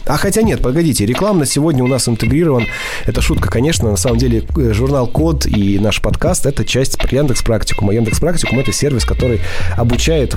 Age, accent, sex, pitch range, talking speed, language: 20-39, native, male, 100-125 Hz, 175 wpm, Russian